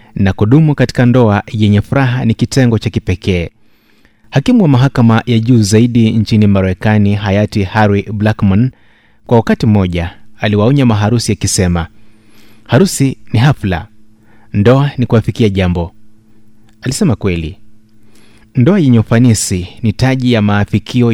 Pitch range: 105-120 Hz